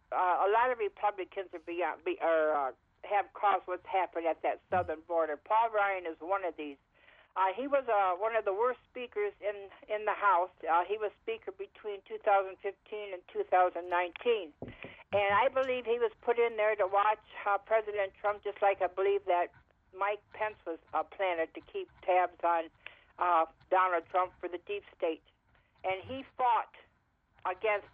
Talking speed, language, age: 180 wpm, English, 60-79